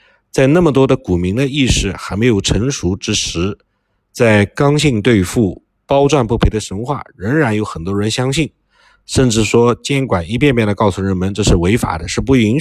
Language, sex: Chinese, male